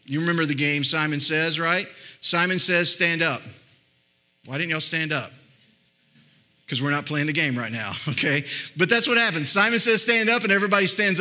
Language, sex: English, male